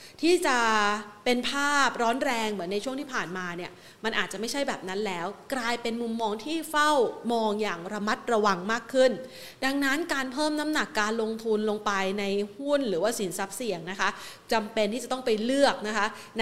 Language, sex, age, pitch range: Thai, female, 30-49, 205-255 Hz